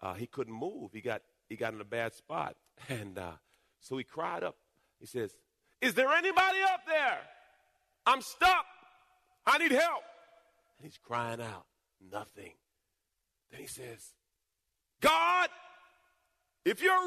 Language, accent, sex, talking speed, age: English, American, male, 140 wpm, 40-59